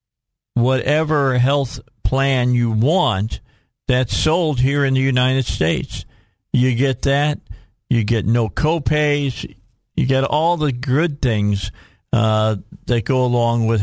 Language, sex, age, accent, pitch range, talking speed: English, male, 50-69, American, 105-130 Hz, 130 wpm